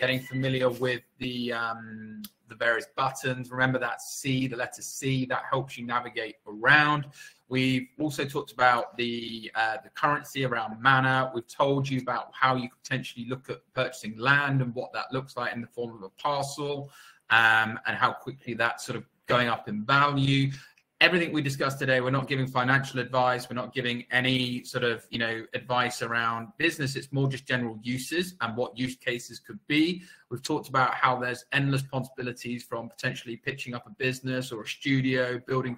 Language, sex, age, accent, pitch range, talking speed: English, male, 20-39, British, 120-135 Hz, 185 wpm